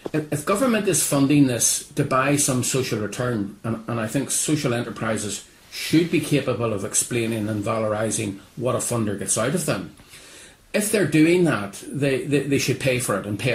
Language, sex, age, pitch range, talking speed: English, male, 40-59, 115-155 Hz, 190 wpm